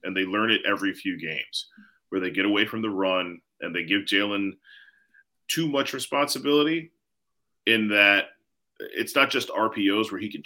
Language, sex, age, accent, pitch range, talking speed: English, male, 30-49, American, 100-135 Hz, 170 wpm